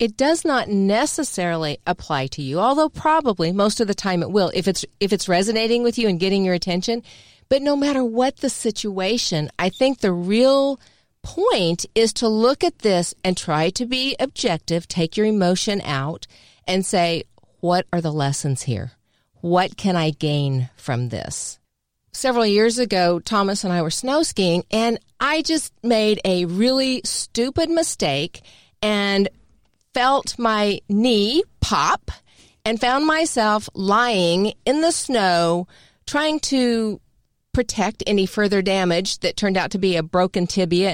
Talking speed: 155 wpm